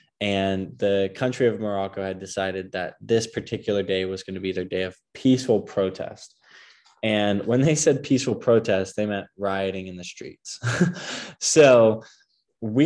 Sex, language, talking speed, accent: male, English, 160 wpm, American